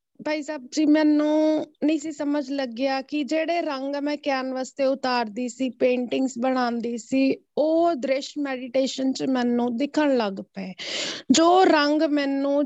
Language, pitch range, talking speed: Punjabi, 260-305 Hz, 140 wpm